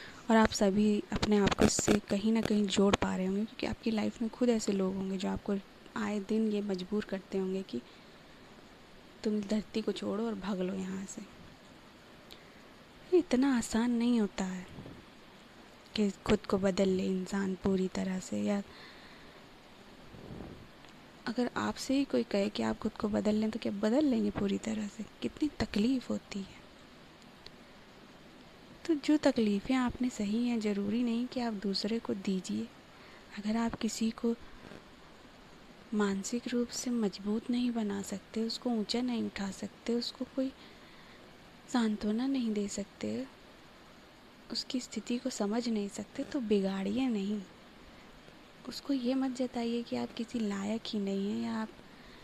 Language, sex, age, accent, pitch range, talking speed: Hindi, female, 20-39, native, 200-240 Hz, 155 wpm